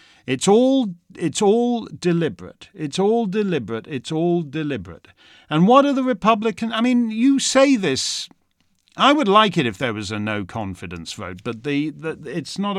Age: 50-69